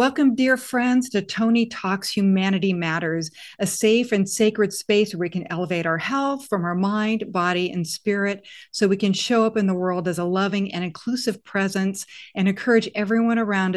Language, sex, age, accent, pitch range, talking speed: English, female, 50-69, American, 180-225 Hz, 185 wpm